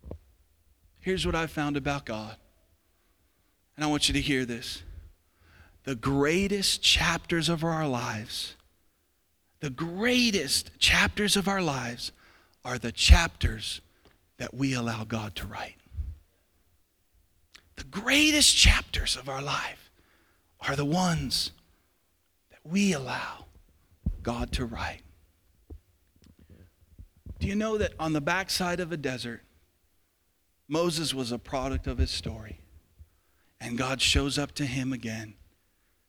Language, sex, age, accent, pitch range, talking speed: English, male, 40-59, American, 85-140 Hz, 120 wpm